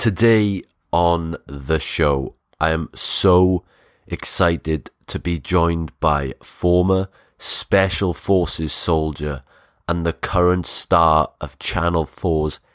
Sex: male